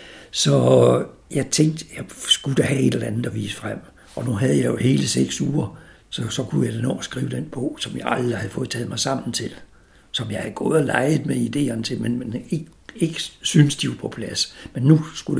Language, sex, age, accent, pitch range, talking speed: Danish, male, 60-79, native, 120-155 Hz, 235 wpm